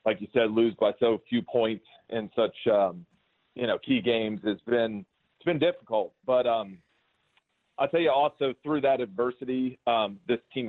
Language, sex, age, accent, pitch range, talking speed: English, male, 40-59, American, 105-125 Hz, 180 wpm